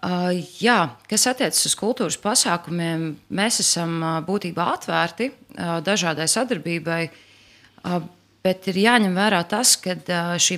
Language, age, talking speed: English, 30-49, 110 wpm